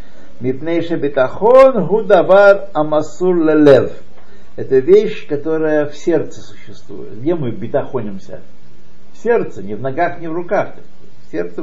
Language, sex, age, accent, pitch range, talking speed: Russian, male, 60-79, native, 140-195 Hz, 100 wpm